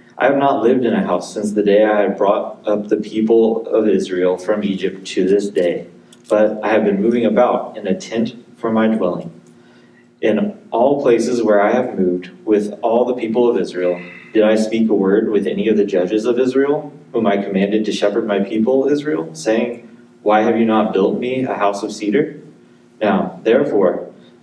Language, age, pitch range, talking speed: English, 30-49, 100-120 Hz, 200 wpm